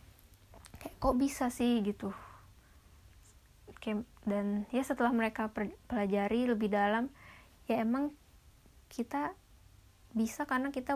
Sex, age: female, 20-39